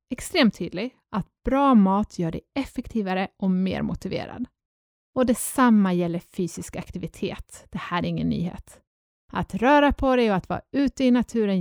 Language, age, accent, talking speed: Swedish, 30-49, native, 160 wpm